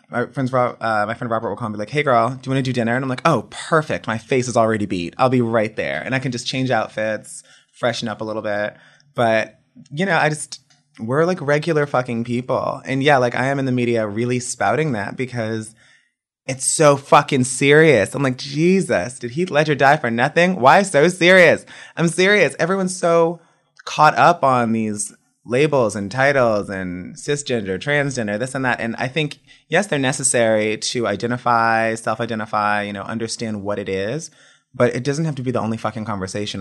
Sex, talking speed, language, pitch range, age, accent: male, 205 wpm, English, 105-135 Hz, 20-39, American